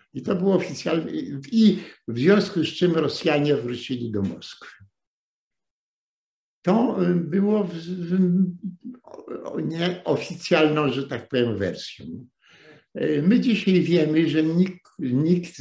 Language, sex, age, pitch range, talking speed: Polish, male, 60-79, 120-170 Hz, 110 wpm